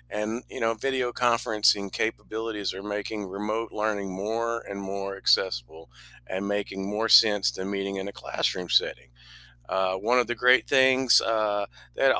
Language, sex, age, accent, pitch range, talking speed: English, male, 50-69, American, 95-120 Hz, 155 wpm